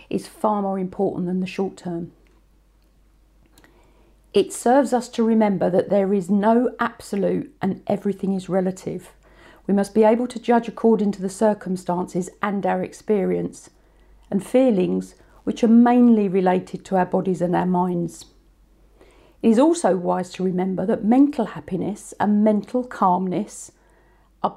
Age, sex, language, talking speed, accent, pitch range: 50-69, female, English, 145 wpm, British, 185-230 Hz